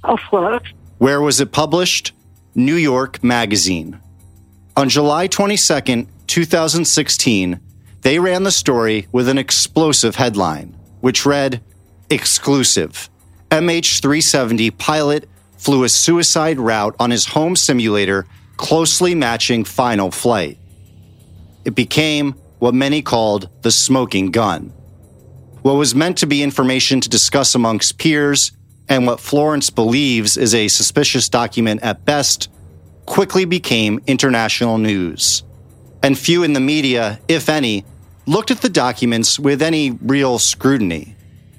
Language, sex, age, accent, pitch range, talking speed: English, male, 40-59, American, 100-140 Hz, 120 wpm